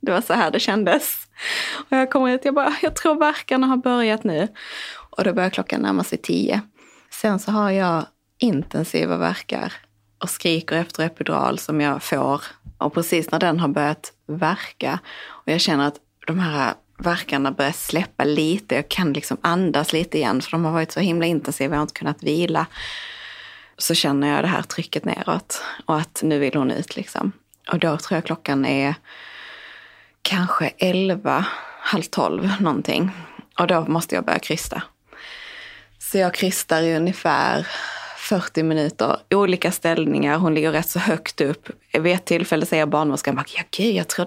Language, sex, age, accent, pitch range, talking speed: Swedish, female, 20-39, native, 150-190 Hz, 165 wpm